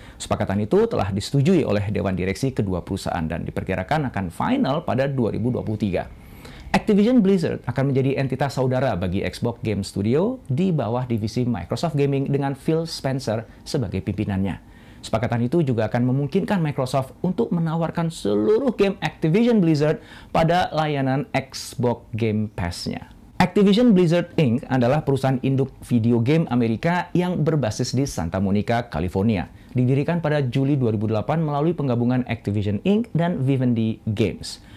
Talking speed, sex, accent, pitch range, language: 135 wpm, male, native, 110-155 Hz, Indonesian